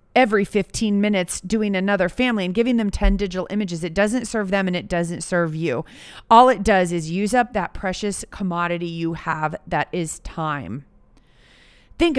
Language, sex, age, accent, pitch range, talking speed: English, female, 30-49, American, 190-260 Hz, 175 wpm